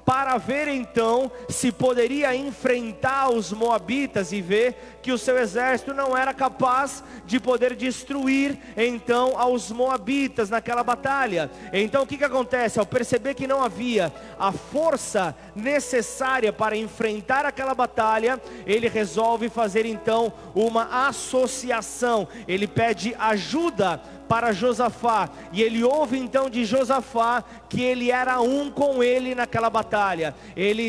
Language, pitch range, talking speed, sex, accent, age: Portuguese, 225-260 Hz, 130 wpm, male, Brazilian, 30-49